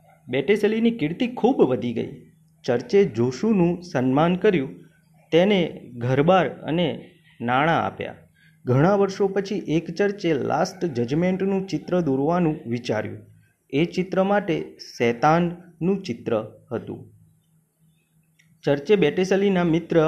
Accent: native